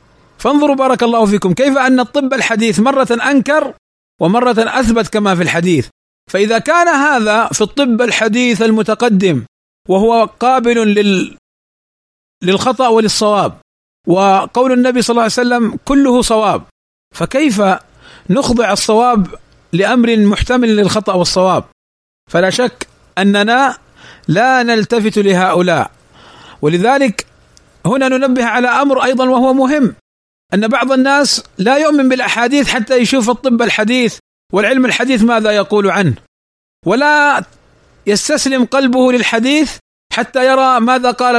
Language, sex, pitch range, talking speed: Arabic, male, 195-255 Hz, 115 wpm